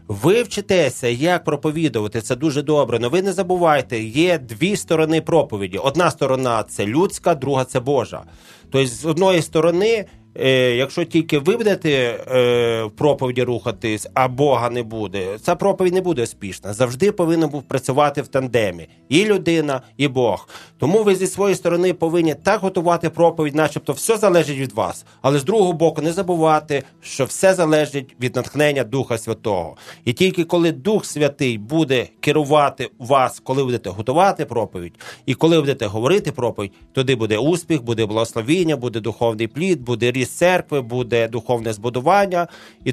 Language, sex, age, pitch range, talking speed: Ukrainian, male, 30-49, 125-175 Hz, 155 wpm